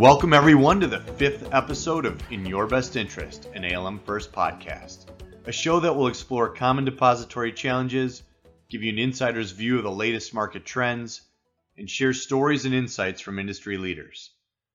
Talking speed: 165 wpm